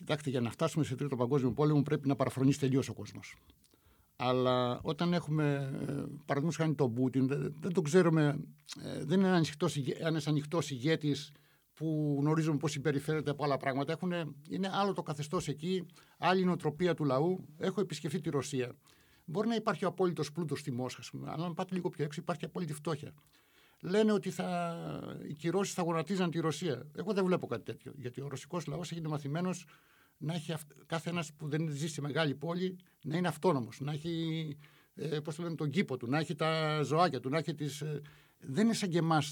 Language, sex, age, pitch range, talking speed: Greek, male, 60-79, 140-170 Hz, 185 wpm